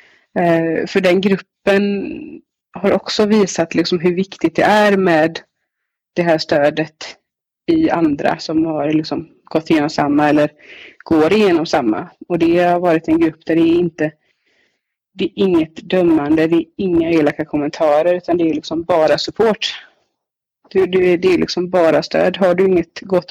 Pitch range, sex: 165-195 Hz, female